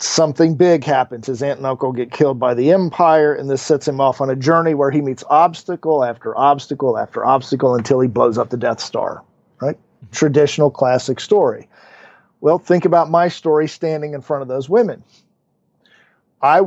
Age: 50-69